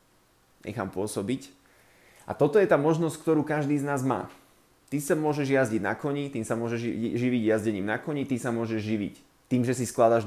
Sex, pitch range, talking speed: male, 115-140 Hz, 195 wpm